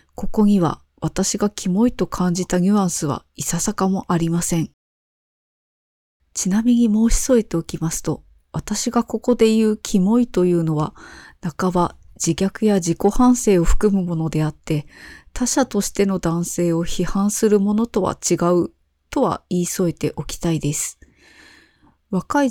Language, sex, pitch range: Japanese, female, 170-220 Hz